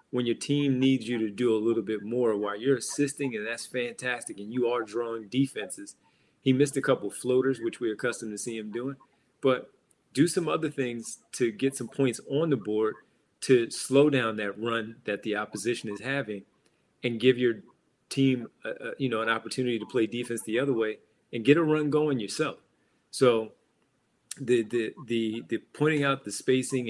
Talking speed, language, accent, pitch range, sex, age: 200 wpm, English, American, 110-130 Hz, male, 30-49